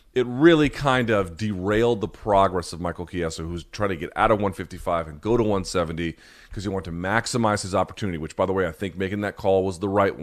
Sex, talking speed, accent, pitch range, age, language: male, 235 wpm, American, 90-120 Hz, 30-49, English